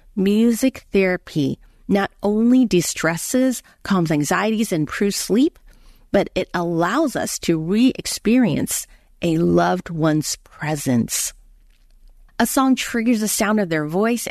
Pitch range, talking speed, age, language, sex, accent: 165-215 Hz, 115 wpm, 40-59, English, female, American